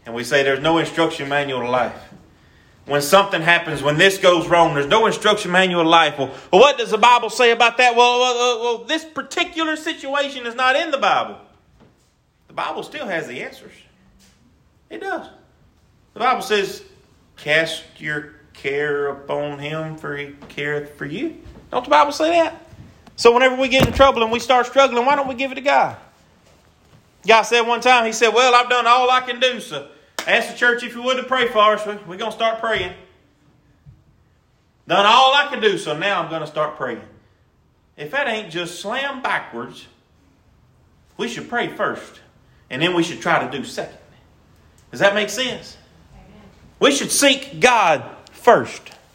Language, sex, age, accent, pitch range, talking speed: English, male, 30-49, American, 155-255 Hz, 185 wpm